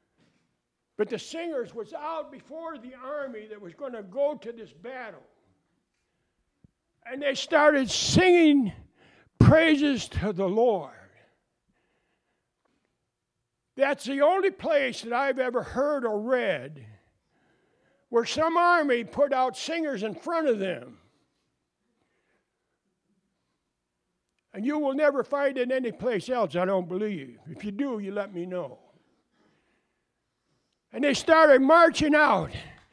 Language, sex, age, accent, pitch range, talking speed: English, male, 60-79, American, 220-320 Hz, 125 wpm